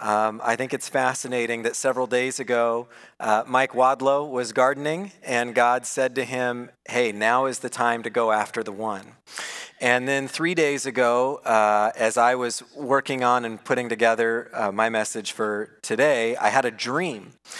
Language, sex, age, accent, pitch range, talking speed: English, male, 40-59, American, 120-150 Hz, 175 wpm